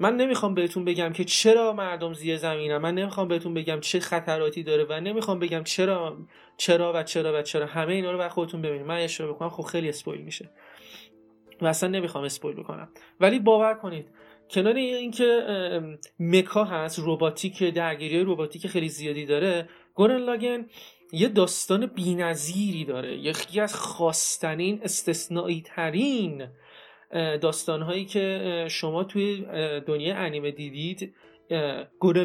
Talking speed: 140 wpm